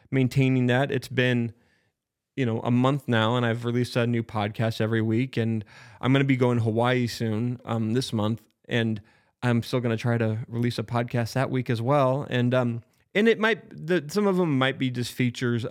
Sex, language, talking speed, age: male, English, 210 wpm, 20-39